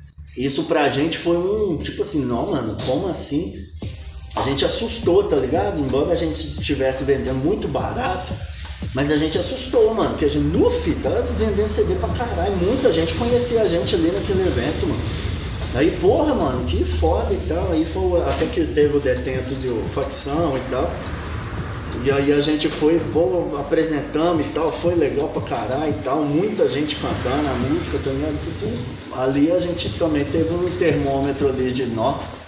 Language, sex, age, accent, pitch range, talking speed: Portuguese, male, 20-39, Brazilian, 105-155 Hz, 180 wpm